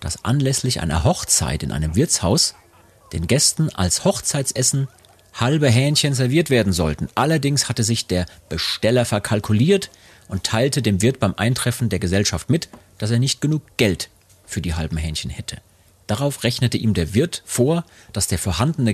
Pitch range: 95-125 Hz